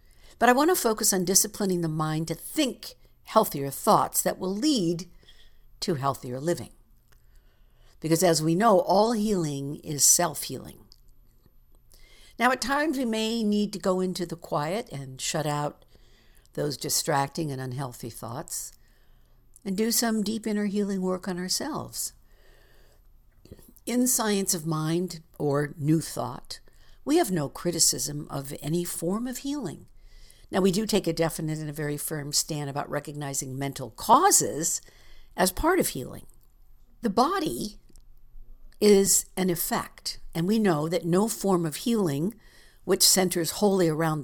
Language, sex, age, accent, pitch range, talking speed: English, female, 60-79, American, 145-205 Hz, 145 wpm